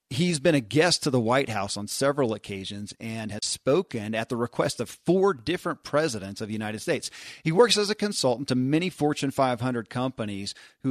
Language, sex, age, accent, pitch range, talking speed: English, male, 40-59, American, 115-145 Hz, 200 wpm